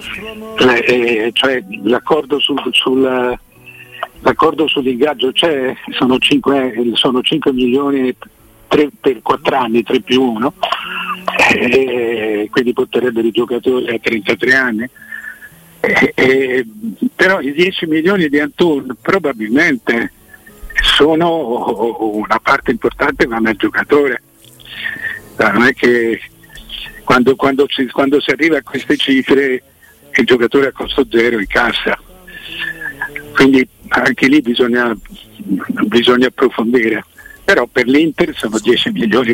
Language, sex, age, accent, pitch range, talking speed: Italian, male, 60-79, native, 120-150 Hz, 115 wpm